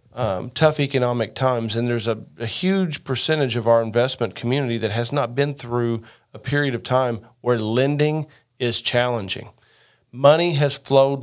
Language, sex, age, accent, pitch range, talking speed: English, male, 40-59, American, 120-145 Hz, 160 wpm